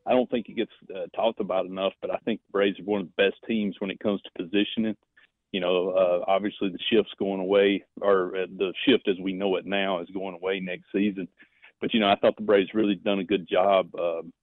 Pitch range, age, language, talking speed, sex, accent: 95-115 Hz, 40-59, English, 250 wpm, male, American